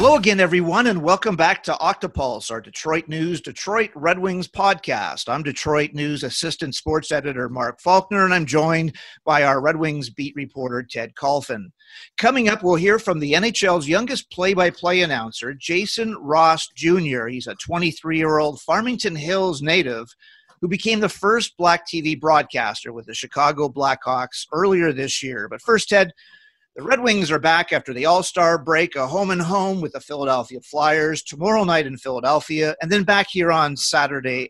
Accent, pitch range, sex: American, 145-190 Hz, male